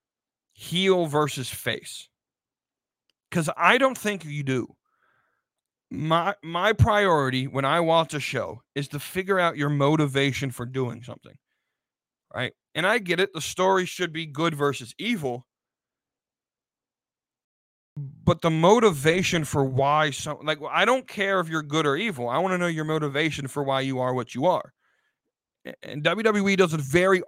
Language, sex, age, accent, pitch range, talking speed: English, male, 30-49, American, 145-180 Hz, 160 wpm